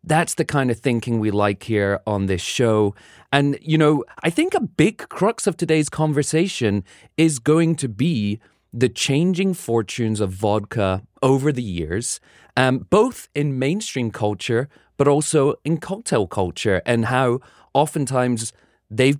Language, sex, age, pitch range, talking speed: English, male, 30-49, 110-150 Hz, 150 wpm